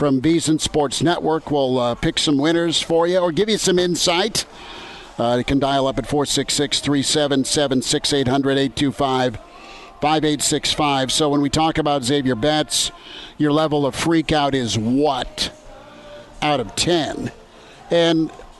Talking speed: 130 wpm